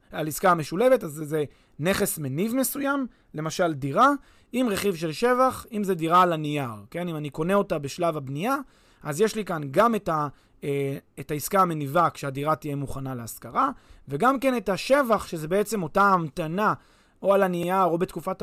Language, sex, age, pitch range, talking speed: Hebrew, male, 30-49, 155-210 Hz, 175 wpm